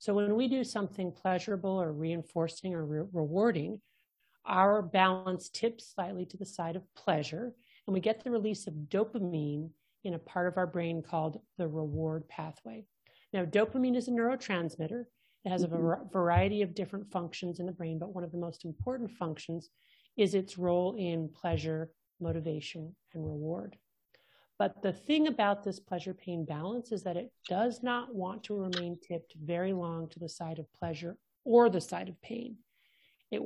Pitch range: 170-210 Hz